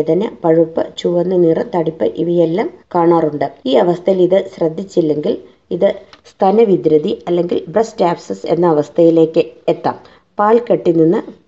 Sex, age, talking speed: female, 20-39, 75 wpm